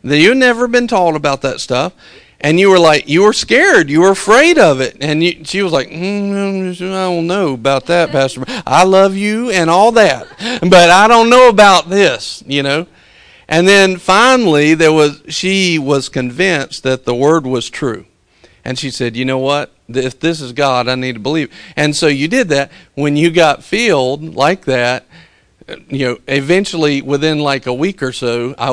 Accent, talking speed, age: American, 200 wpm, 50-69